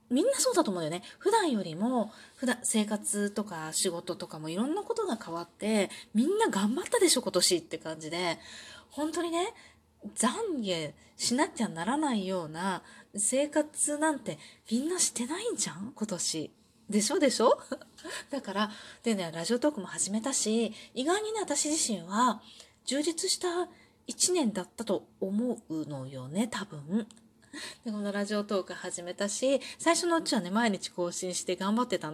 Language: Japanese